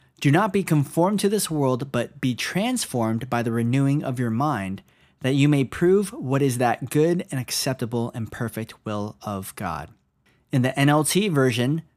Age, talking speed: 20-39, 175 wpm